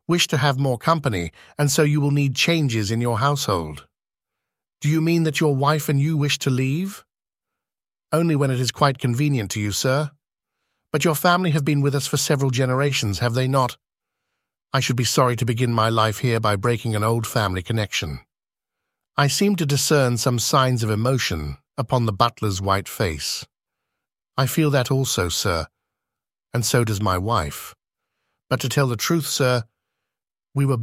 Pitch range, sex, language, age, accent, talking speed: 115-140 Hz, male, English, 50-69, British, 180 wpm